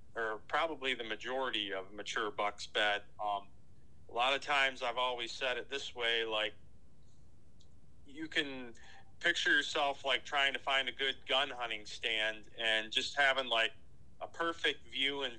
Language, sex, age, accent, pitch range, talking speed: English, male, 40-59, American, 105-125 Hz, 160 wpm